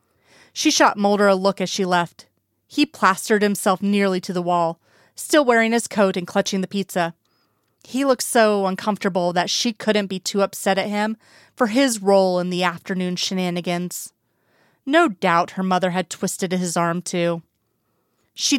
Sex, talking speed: female, 170 wpm